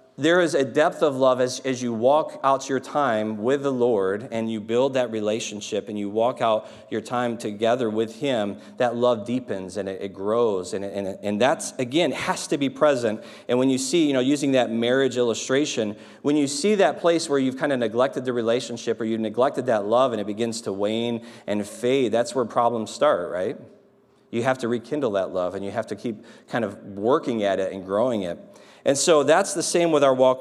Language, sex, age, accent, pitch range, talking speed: English, male, 40-59, American, 115-140 Hz, 220 wpm